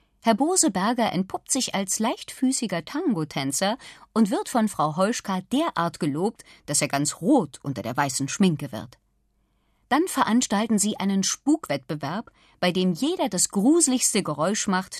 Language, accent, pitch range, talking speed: German, German, 160-240 Hz, 140 wpm